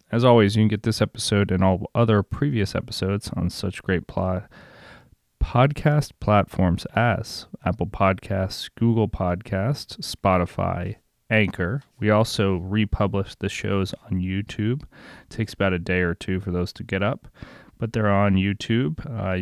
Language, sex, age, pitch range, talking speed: English, male, 30-49, 95-110 Hz, 150 wpm